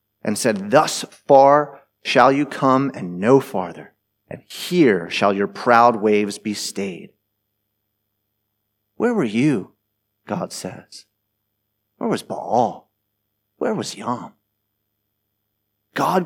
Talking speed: 110 wpm